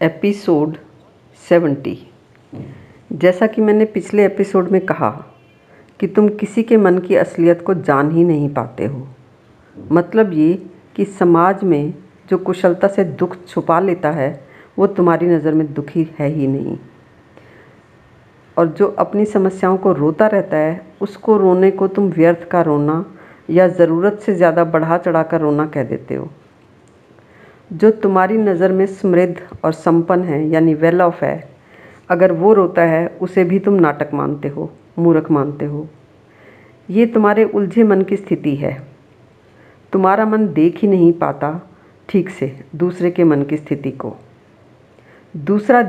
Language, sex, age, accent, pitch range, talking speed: Hindi, female, 50-69, native, 150-195 Hz, 150 wpm